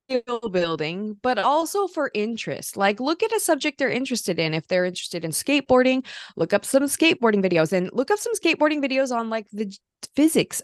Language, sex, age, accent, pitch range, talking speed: English, female, 20-39, American, 190-250 Hz, 185 wpm